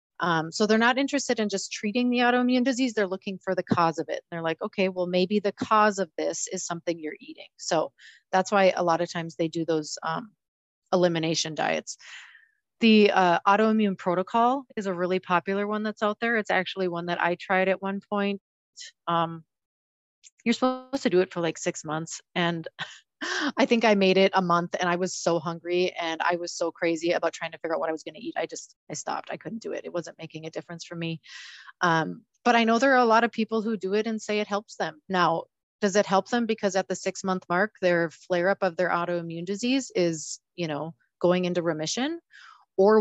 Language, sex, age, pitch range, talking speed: English, female, 30-49, 170-220 Hz, 225 wpm